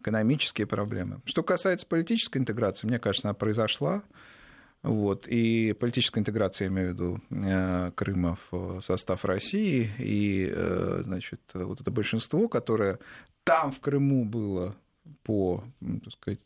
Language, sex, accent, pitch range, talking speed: Russian, male, native, 100-140 Hz, 125 wpm